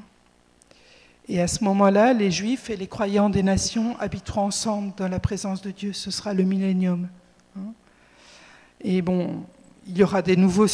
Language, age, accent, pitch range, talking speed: French, 50-69, French, 195-240 Hz, 160 wpm